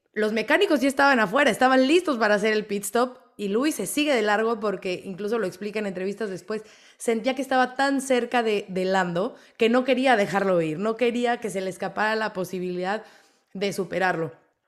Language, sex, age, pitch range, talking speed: Spanish, female, 20-39, 180-220 Hz, 195 wpm